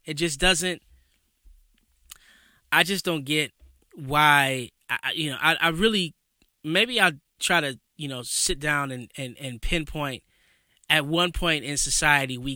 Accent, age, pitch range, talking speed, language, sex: American, 20-39, 130-165 Hz, 155 wpm, English, male